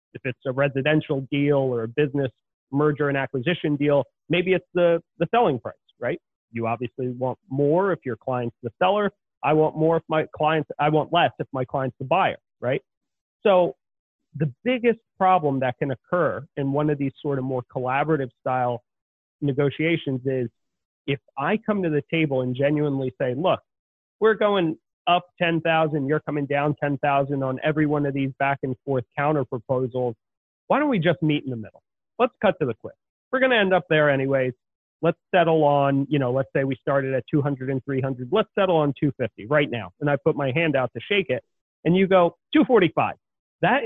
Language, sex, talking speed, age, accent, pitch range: English, male, 195 wpm, 30-49, American, 135-175 Hz